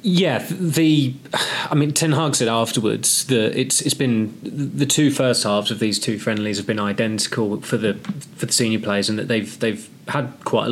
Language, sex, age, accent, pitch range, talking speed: English, male, 20-39, British, 100-120 Hz, 200 wpm